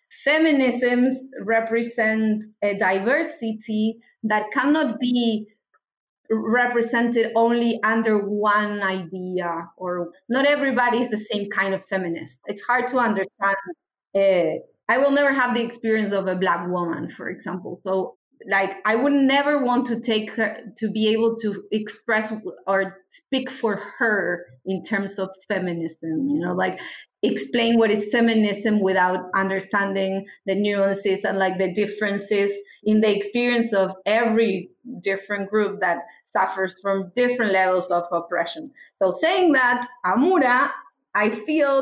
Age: 30-49